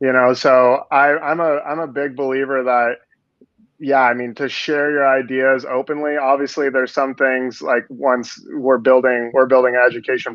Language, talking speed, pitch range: English, 180 wpm, 125-140 Hz